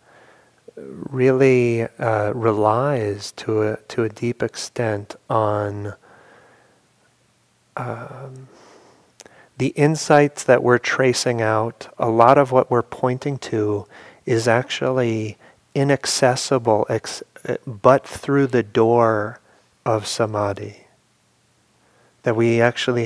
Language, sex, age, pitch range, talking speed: English, male, 40-59, 110-130 Hz, 90 wpm